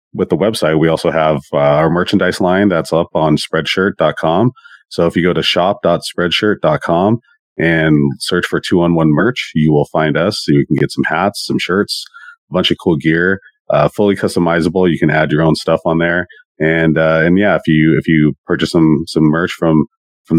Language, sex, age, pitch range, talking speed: English, male, 30-49, 75-90 Hz, 195 wpm